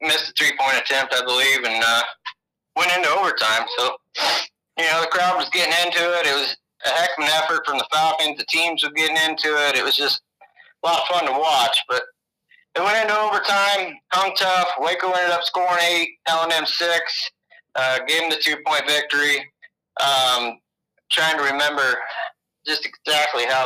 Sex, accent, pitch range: male, American, 145-170 Hz